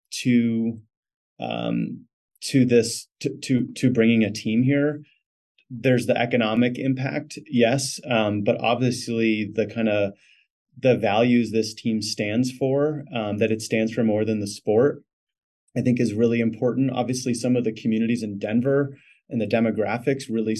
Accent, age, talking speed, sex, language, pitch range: American, 30-49, 155 wpm, male, English, 110-135 Hz